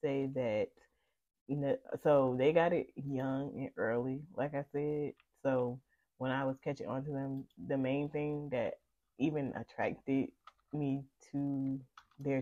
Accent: American